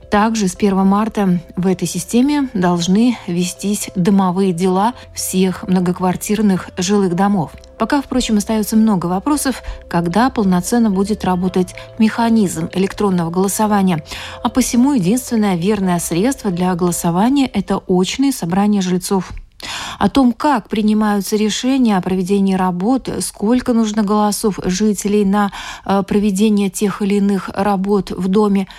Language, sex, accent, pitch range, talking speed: Russian, female, native, 190-220 Hz, 120 wpm